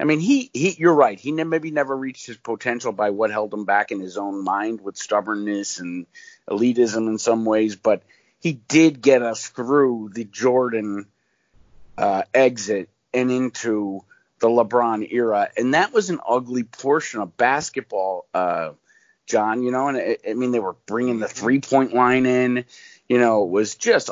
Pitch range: 110-160 Hz